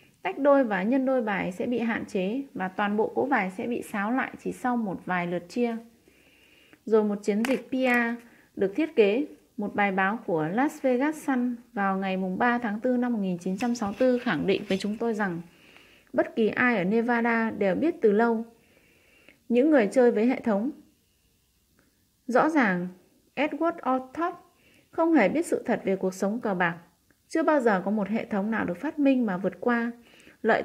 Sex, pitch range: female, 200-260 Hz